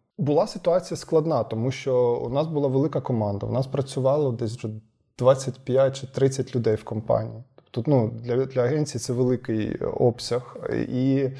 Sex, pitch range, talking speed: male, 120-155 Hz, 155 wpm